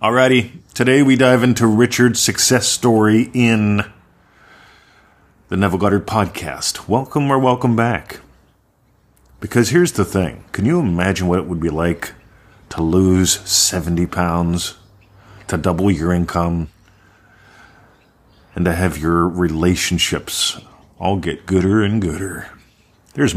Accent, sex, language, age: American, male, English, 40-59